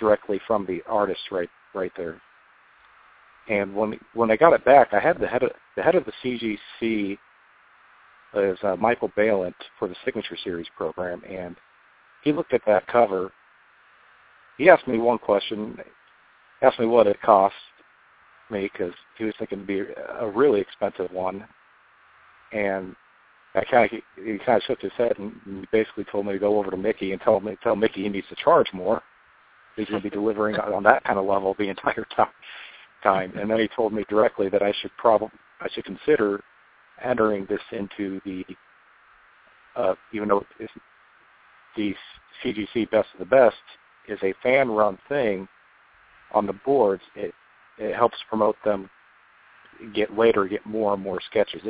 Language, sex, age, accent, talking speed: English, male, 50-69, American, 175 wpm